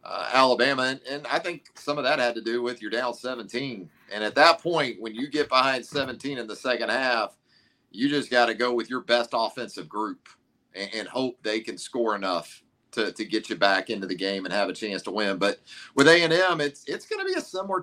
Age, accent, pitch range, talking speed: 40-59, American, 110-130 Hz, 230 wpm